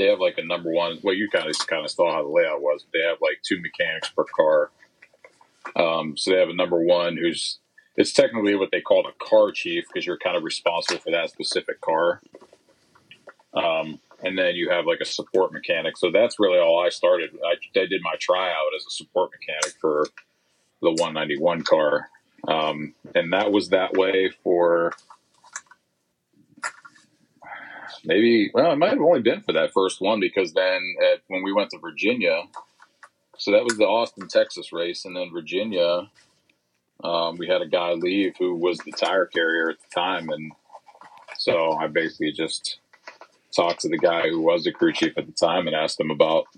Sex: male